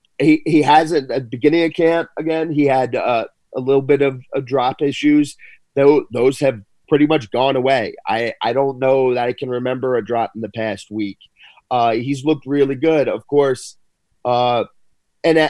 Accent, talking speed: American, 185 wpm